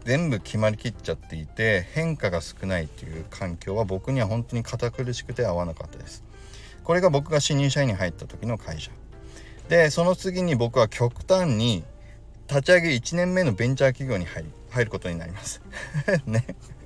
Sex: male